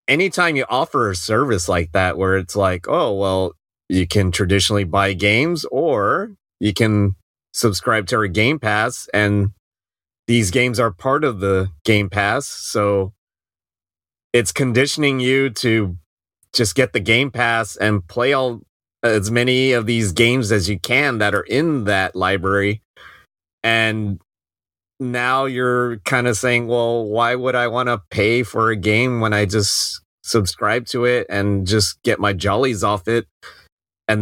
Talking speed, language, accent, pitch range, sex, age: 160 wpm, English, American, 95-120 Hz, male, 30-49